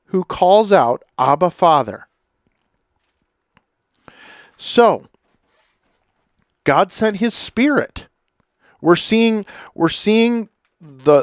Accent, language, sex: American, English, male